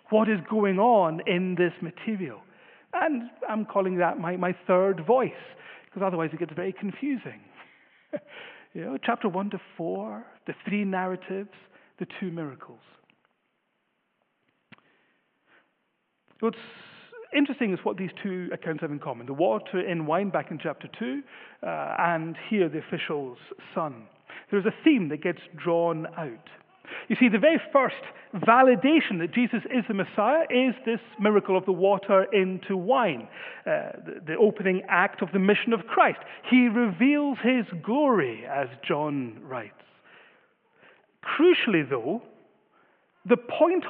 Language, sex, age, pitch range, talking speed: English, male, 40-59, 180-245 Hz, 140 wpm